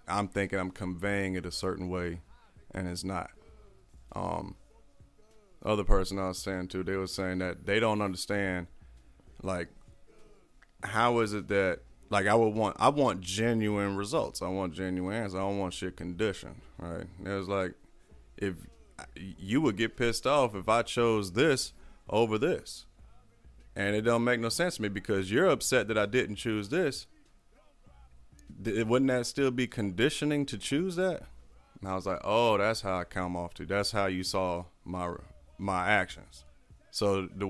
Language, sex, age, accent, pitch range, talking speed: English, male, 30-49, American, 90-110 Hz, 170 wpm